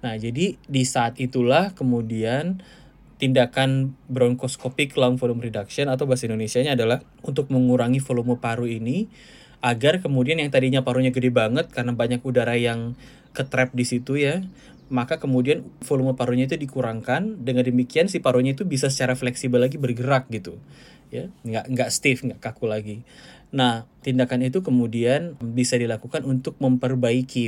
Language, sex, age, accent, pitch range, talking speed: Indonesian, male, 10-29, native, 120-135 Hz, 145 wpm